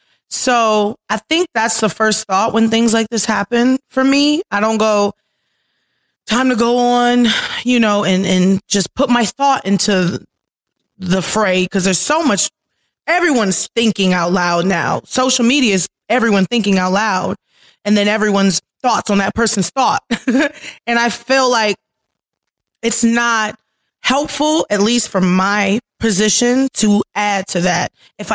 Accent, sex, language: American, female, English